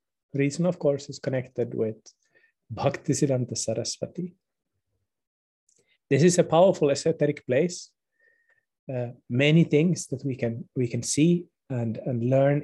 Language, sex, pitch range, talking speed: English, male, 130-175 Hz, 130 wpm